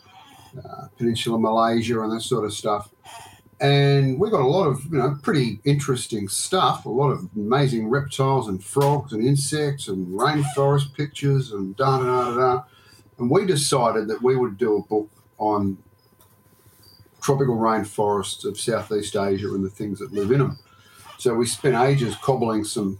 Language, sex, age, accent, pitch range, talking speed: English, male, 50-69, Australian, 110-140 Hz, 165 wpm